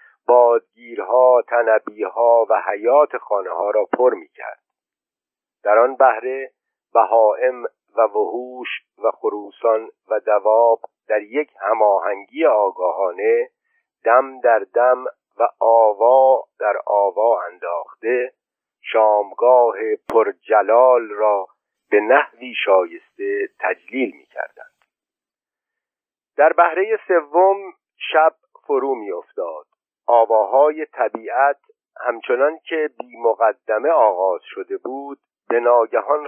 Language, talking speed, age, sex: Persian, 95 wpm, 50-69, male